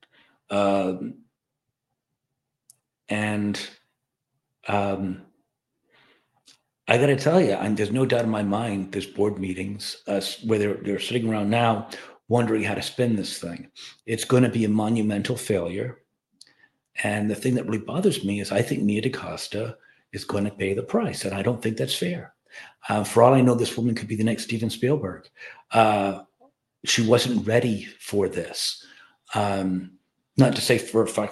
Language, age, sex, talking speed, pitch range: English, 50-69, male, 165 wpm, 100-130 Hz